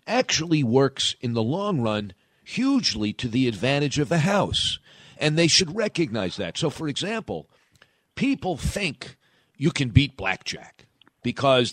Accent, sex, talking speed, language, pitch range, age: American, male, 145 wpm, English, 105-150 Hz, 50-69